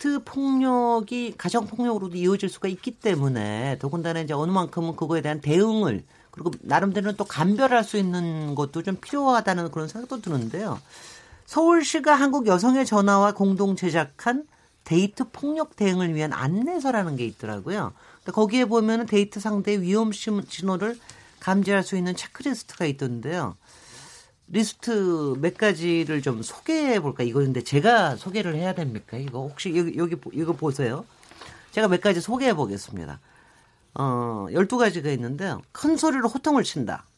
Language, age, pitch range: Korean, 40-59, 160-235 Hz